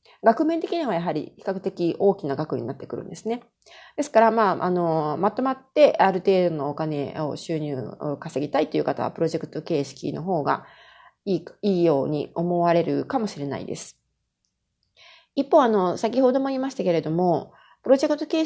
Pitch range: 165-235 Hz